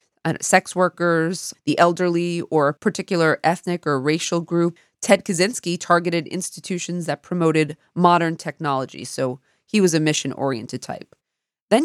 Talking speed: 130 wpm